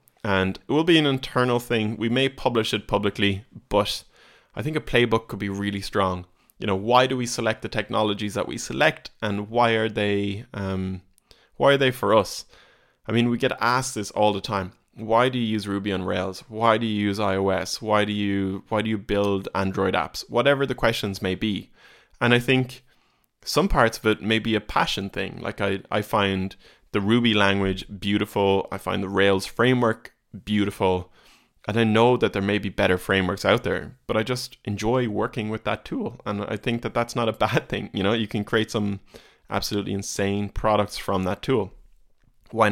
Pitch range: 100-115 Hz